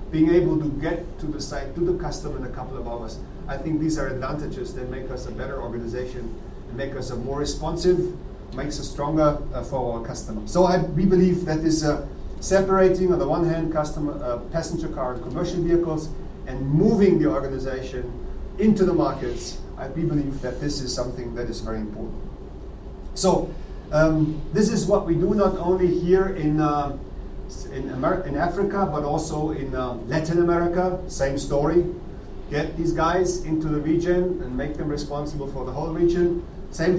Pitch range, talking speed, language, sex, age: 135-170 Hz, 185 wpm, English, male, 40-59